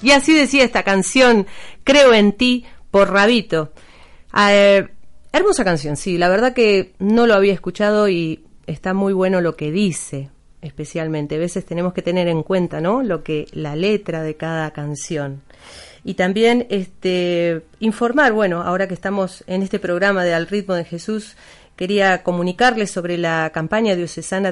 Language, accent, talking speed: Spanish, Argentinian, 160 wpm